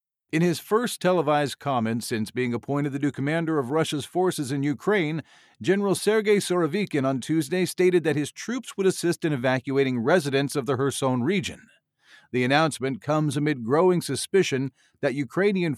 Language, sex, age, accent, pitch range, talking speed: English, male, 50-69, American, 140-175 Hz, 160 wpm